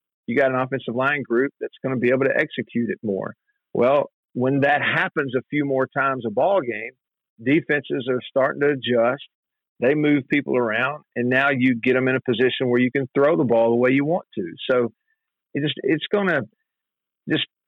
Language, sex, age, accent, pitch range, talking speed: English, male, 50-69, American, 120-140 Hz, 205 wpm